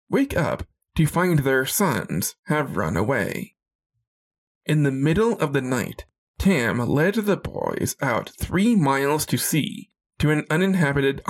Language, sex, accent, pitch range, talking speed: English, male, American, 130-170 Hz, 145 wpm